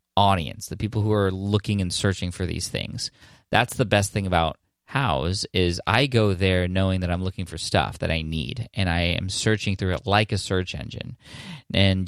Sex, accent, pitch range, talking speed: male, American, 95-110 Hz, 205 wpm